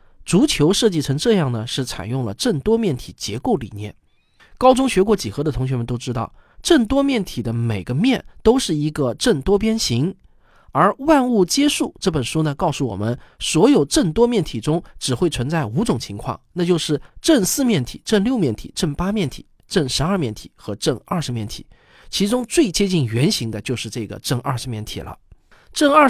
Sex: male